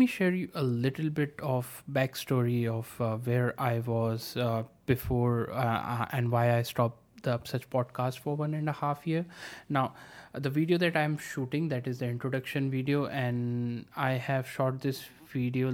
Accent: Indian